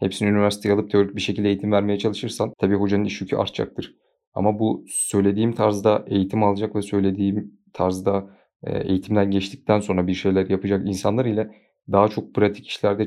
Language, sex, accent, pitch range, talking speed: Turkish, male, native, 100-110 Hz, 155 wpm